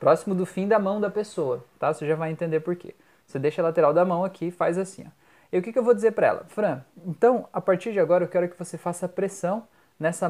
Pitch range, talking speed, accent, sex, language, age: 155-195 Hz, 270 wpm, Brazilian, male, Portuguese, 20-39